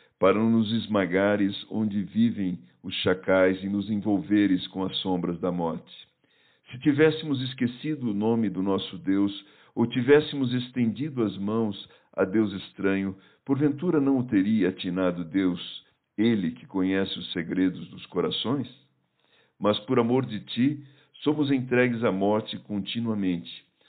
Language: Portuguese